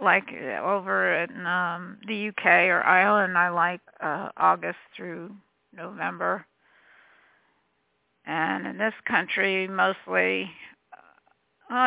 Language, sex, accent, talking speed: English, female, American, 100 wpm